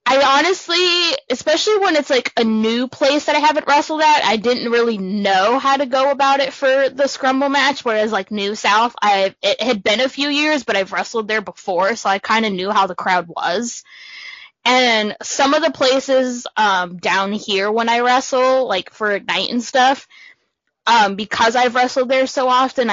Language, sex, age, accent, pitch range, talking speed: English, female, 10-29, American, 205-265 Hz, 195 wpm